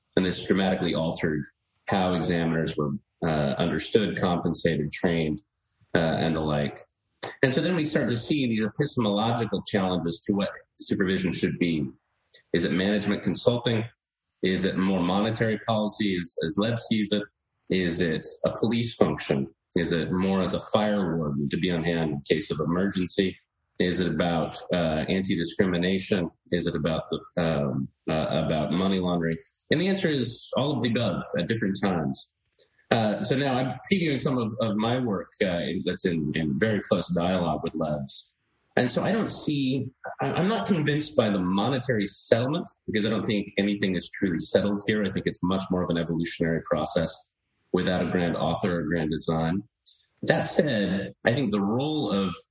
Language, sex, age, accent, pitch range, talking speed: English, male, 30-49, American, 85-115 Hz, 175 wpm